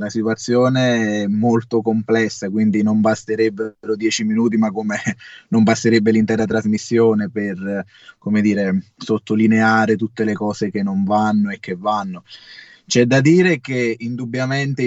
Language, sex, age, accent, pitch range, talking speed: Italian, male, 20-39, native, 105-120 Hz, 135 wpm